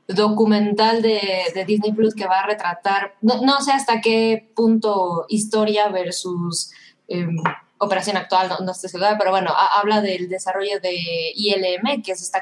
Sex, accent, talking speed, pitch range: female, Mexican, 180 wpm, 200-245 Hz